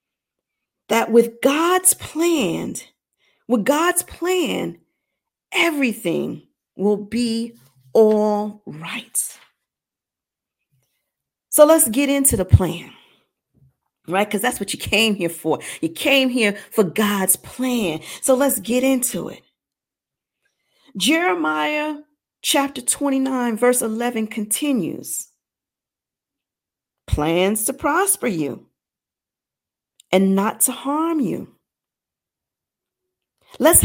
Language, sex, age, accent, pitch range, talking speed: English, female, 40-59, American, 210-315 Hz, 95 wpm